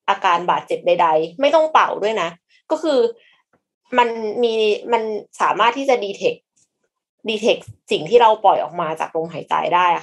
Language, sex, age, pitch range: Thai, female, 20-39, 190-265 Hz